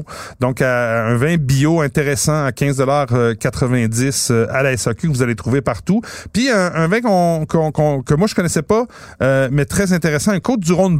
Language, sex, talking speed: French, male, 190 wpm